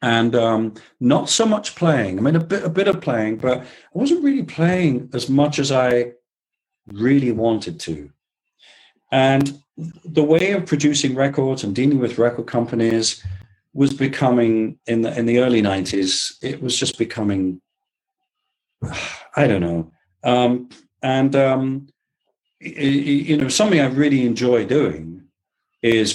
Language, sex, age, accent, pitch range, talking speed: English, male, 40-59, British, 105-140 Hz, 145 wpm